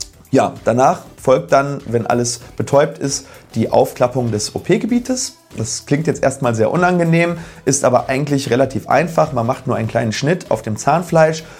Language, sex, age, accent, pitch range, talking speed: German, male, 30-49, German, 115-150 Hz, 165 wpm